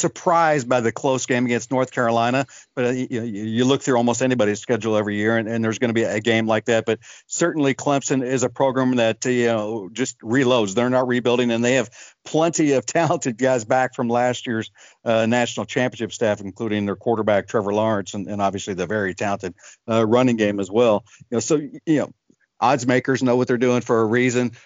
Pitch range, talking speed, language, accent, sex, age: 115-135 Hz, 220 wpm, English, American, male, 50-69